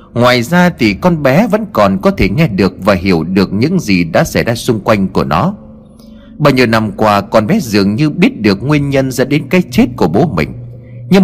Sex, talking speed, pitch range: male, 230 wpm, 105-170 Hz